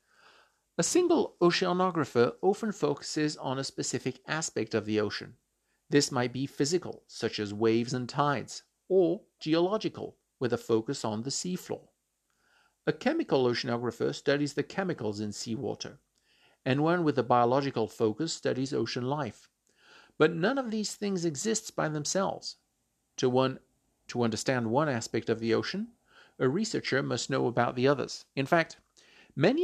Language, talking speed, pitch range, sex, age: English, 150 wpm, 120-170 Hz, male, 50-69